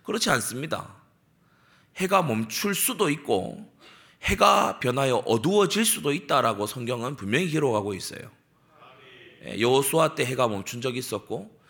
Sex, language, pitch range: male, Korean, 110-160 Hz